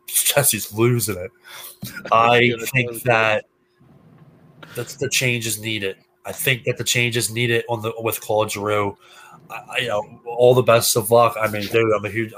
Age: 20-39